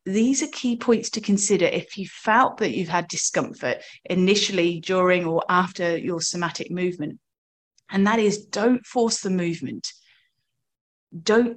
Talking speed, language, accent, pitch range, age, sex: 145 wpm, English, British, 170-225 Hz, 30-49, female